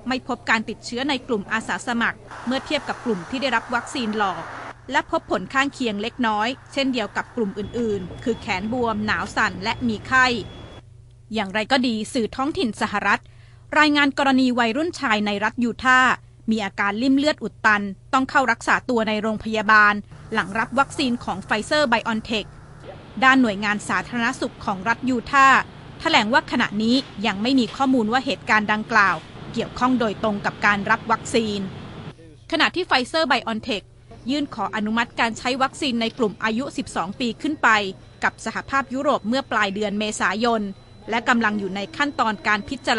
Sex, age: female, 20-39